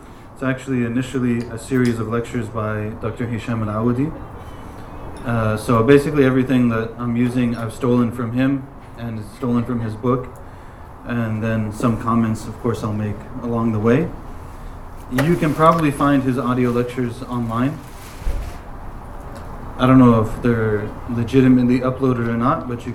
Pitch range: 110-130 Hz